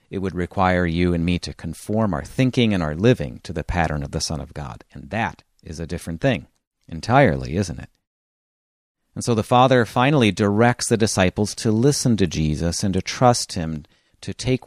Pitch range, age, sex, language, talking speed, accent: 90-115 Hz, 40-59, male, English, 195 wpm, American